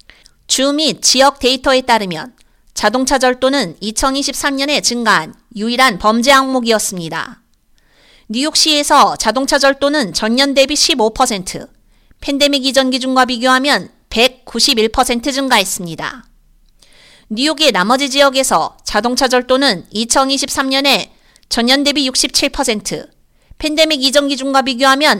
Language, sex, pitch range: Korean, female, 240-290 Hz